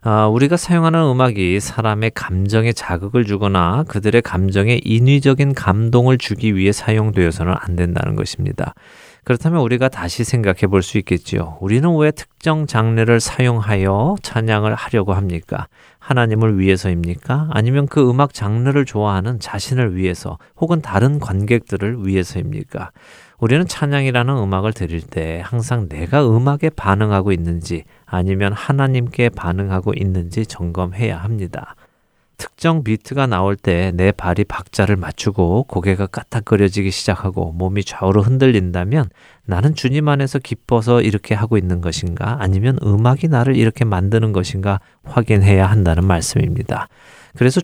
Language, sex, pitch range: Korean, male, 95-125 Hz